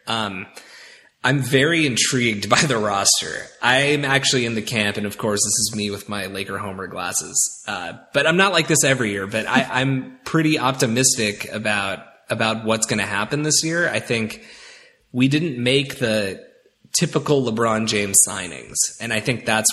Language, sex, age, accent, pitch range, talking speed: English, male, 20-39, American, 105-130 Hz, 180 wpm